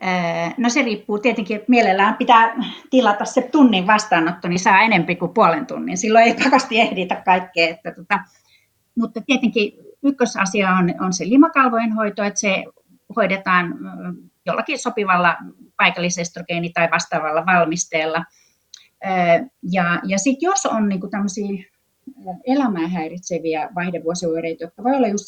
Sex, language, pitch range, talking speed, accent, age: female, Finnish, 165-215 Hz, 130 wpm, native, 30-49